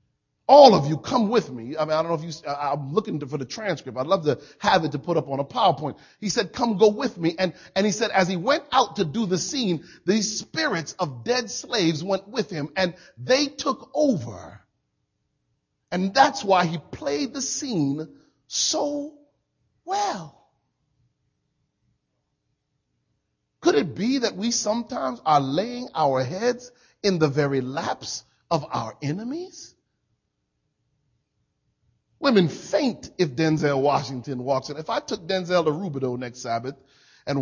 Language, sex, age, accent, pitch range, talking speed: English, male, 40-59, American, 150-225 Hz, 160 wpm